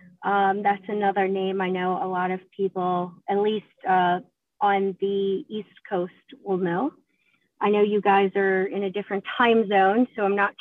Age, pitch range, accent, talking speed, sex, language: 30-49, 190-230 Hz, American, 180 wpm, female, English